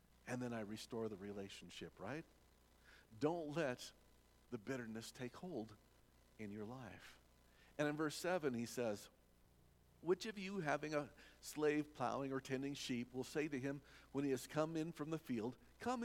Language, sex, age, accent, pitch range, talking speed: English, male, 50-69, American, 110-155 Hz, 170 wpm